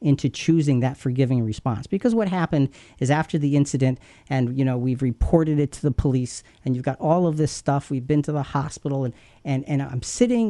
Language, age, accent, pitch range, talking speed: English, 40-59, American, 120-155 Hz, 215 wpm